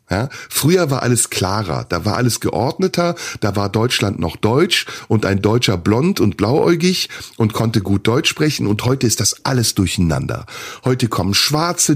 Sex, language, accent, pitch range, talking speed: male, German, German, 105-145 Hz, 165 wpm